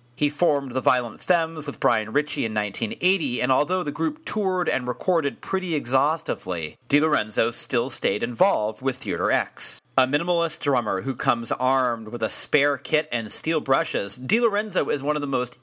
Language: English